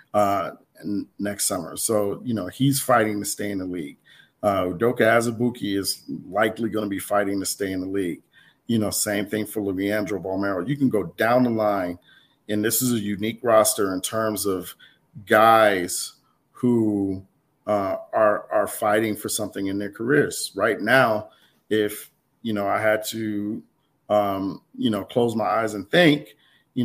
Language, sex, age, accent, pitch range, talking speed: English, male, 40-59, American, 100-115 Hz, 170 wpm